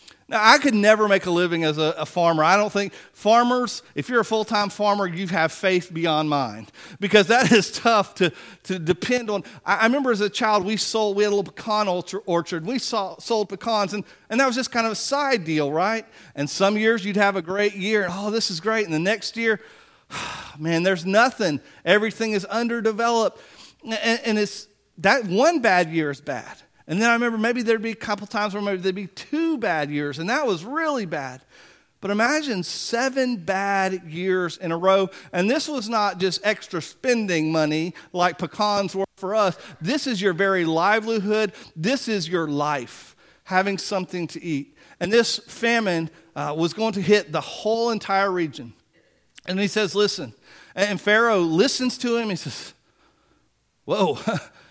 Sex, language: male, English